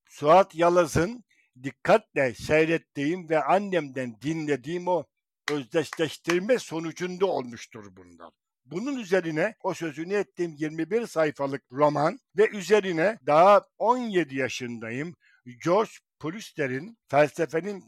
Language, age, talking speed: Turkish, 60-79, 95 wpm